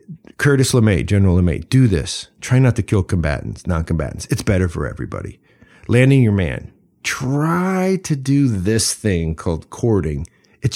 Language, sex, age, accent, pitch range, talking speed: English, male, 50-69, American, 95-145 Hz, 150 wpm